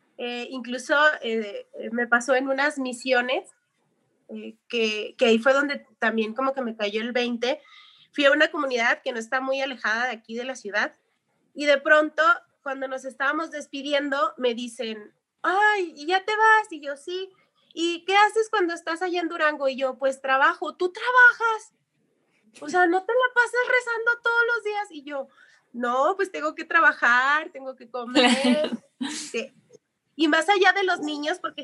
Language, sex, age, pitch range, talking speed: Spanish, female, 30-49, 250-320 Hz, 180 wpm